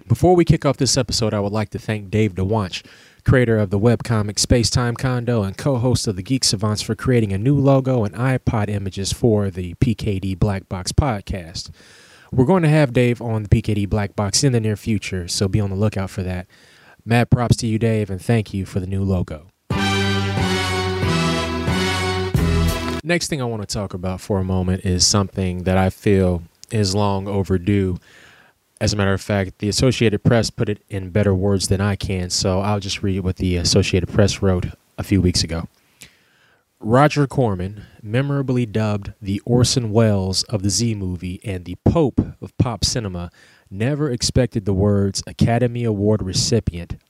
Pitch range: 95-120 Hz